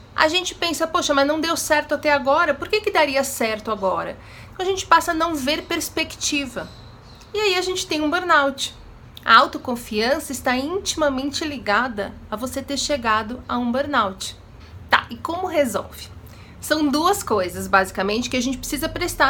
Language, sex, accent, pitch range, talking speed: Portuguese, female, Brazilian, 230-300 Hz, 170 wpm